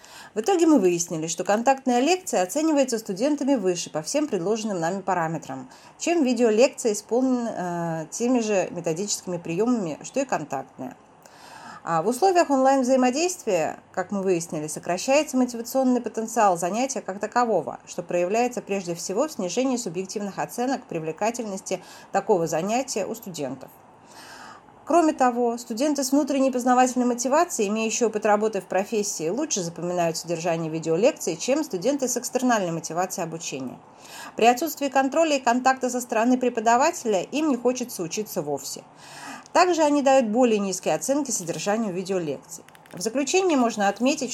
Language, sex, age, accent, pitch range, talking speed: Russian, female, 30-49, native, 180-255 Hz, 130 wpm